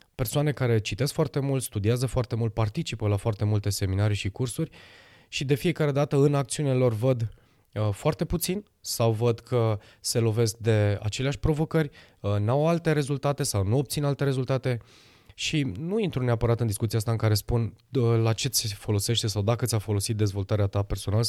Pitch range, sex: 105-135 Hz, male